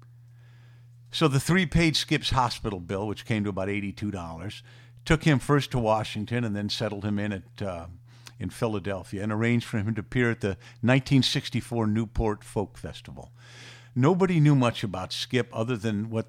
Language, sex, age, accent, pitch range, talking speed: English, male, 50-69, American, 110-130 Hz, 165 wpm